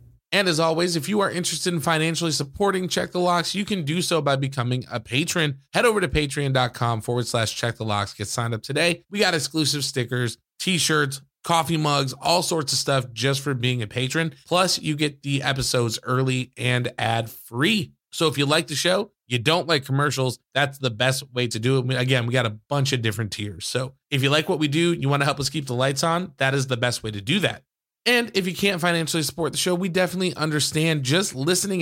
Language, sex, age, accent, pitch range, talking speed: English, male, 20-39, American, 120-150 Hz, 230 wpm